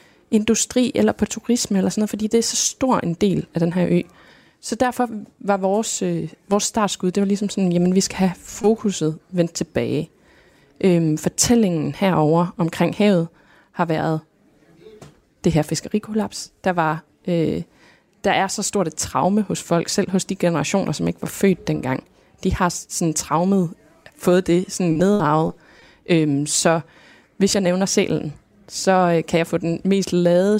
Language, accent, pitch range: Danish, native, 165-205 Hz